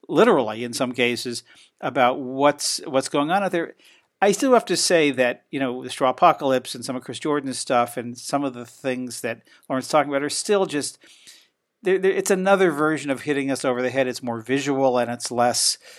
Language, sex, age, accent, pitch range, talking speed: English, male, 50-69, American, 125-150 Hz, 215 wpm